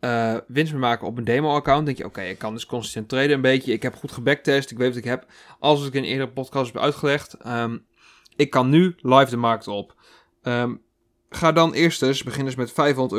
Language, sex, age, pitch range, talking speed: Dutch, male, 20-39, 115-140 Hz, 235 wpm